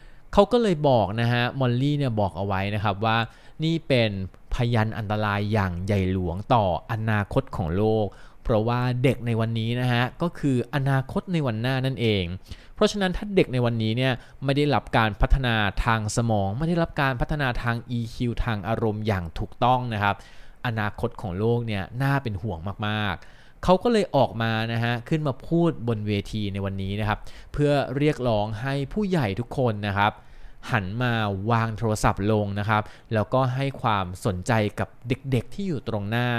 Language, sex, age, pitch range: Thai, male, 20-39, 105-135 Hz